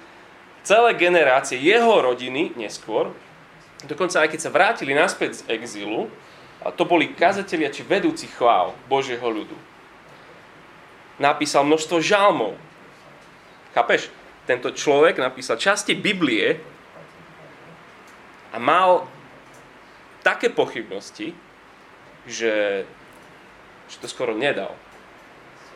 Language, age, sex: Slovak, 30-49, male